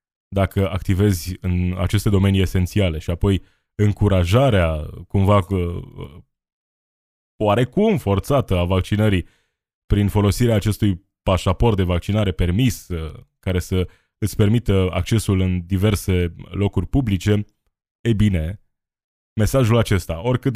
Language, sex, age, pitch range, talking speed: Romanian, male, 20-39, 90-110 Hz, 100 wpm